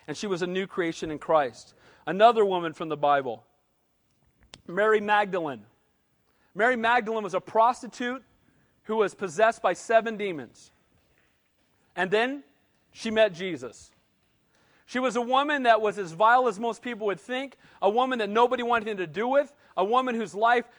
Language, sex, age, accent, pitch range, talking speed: English, male, 40-59, American, 210-255 Hz, 165 wpm